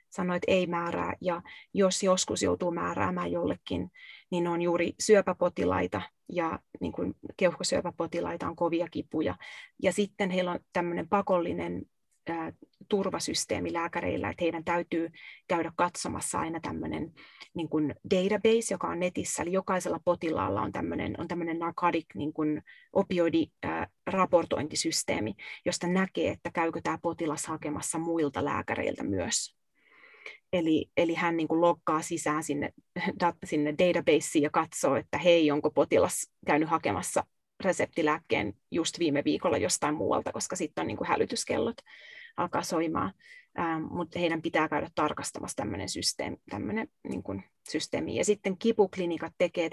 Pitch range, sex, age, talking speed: 165-195 Hz, female, 30-49, 115 wpm